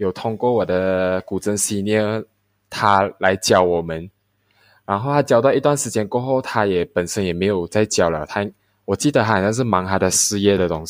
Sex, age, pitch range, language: male, 20-39, 100-130 Hz, Chinese